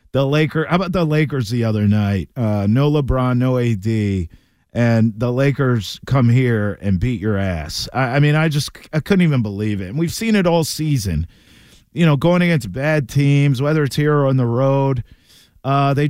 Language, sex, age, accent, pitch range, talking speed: English, male, 40-59, American, 110-155 Hz, 200 wpm